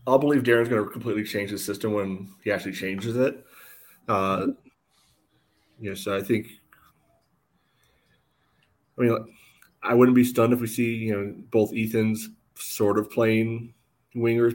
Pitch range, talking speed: 95-110 Hz, 155 wpm